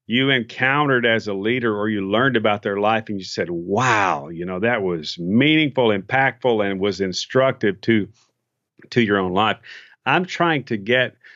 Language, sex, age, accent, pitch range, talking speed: English, male, 50-69, American, 105-125 Hz, 175 wpm